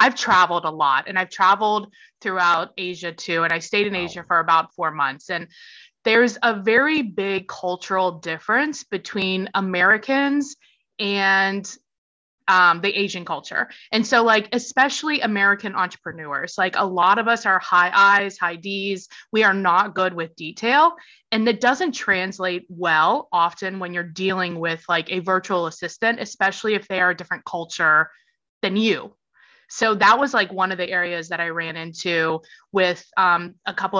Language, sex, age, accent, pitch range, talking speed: English, female, 20-39, American, 175-230 Hz, 165 wpm